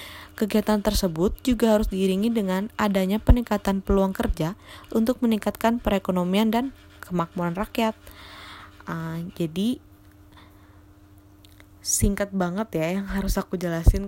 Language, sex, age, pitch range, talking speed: Indonesian, female, 20-39, 165-205 Hz, 105 wpm